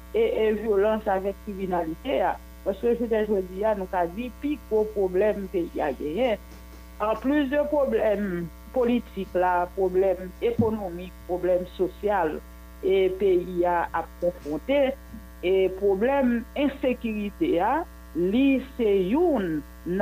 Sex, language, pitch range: female, French, 190-255 Hz